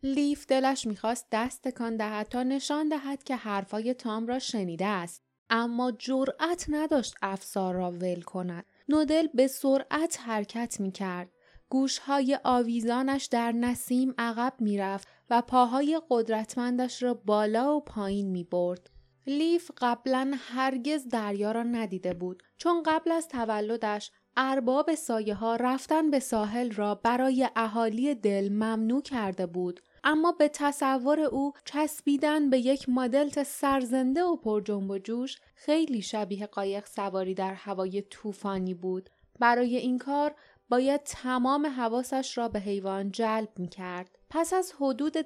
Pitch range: 205-270 Hz